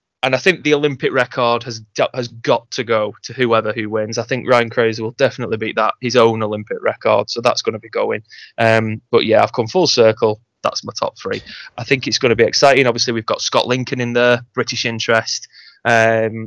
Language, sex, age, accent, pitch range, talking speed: English, male, 20-39, British, 110-120 Hz, 220 wpm